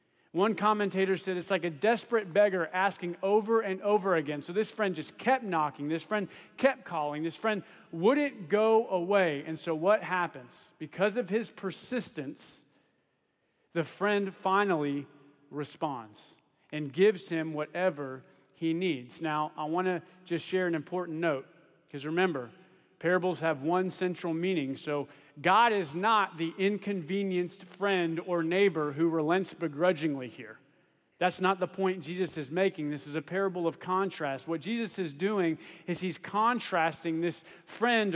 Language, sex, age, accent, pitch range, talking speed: English, male, 40-59, American, 165-210 Hz, 155 wpm